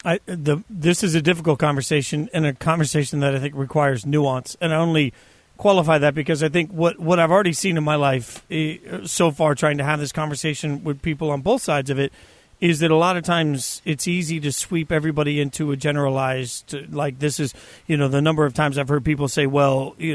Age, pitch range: 40-59, 140-165 Hz